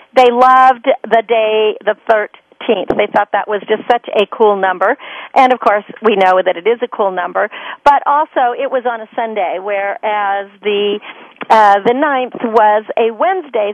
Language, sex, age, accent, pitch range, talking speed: English, female, 50-69, American, 210-290 Hz, 180 wpm